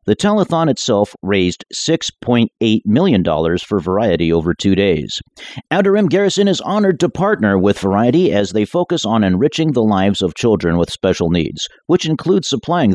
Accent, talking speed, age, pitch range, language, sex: American, 160 wpm, 50-69, 90-145 Hz, English, male